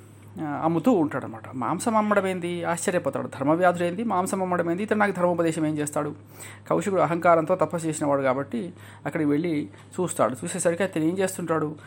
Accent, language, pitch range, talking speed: native, Telugu, 135-180 Hz, 135 wpm